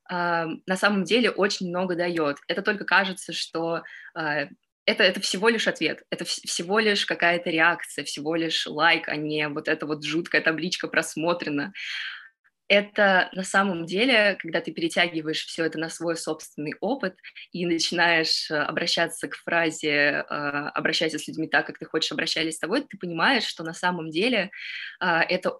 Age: 20-39